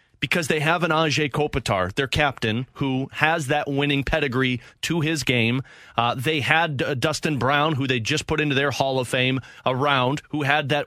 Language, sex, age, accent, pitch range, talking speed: English, male, 30-49, American, 130-155 Hz, 190 wpm